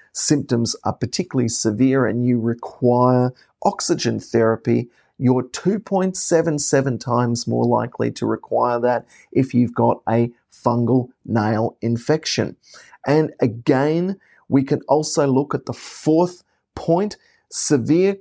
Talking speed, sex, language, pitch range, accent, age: 115 wpm, male, English, 115-150 Hz, Australian, 40-59